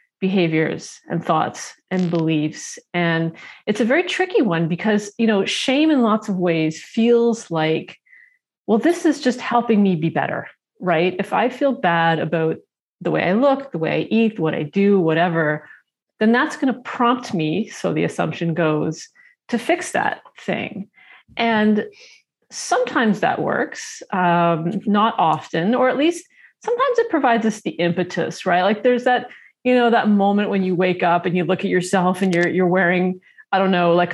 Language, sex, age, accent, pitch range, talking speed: English, female, 40-59, American, 175-240 Hz, 180 wpm